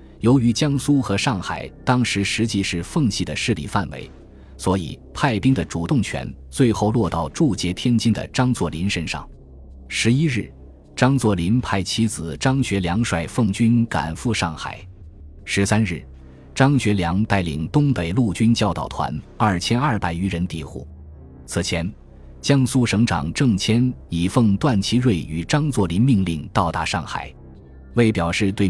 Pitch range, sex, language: 80-115 Hz, male, Chinese